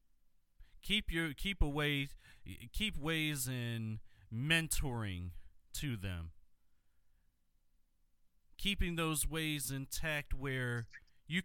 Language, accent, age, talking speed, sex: English, American, 30-49, 85 wpm, male